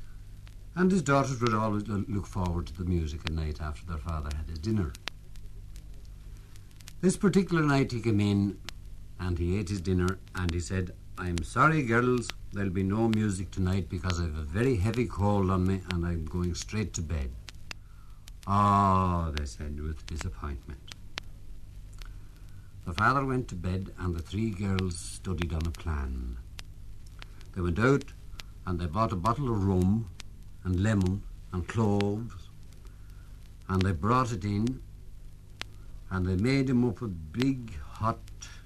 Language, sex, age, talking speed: English, male, 60-79, 155 wpm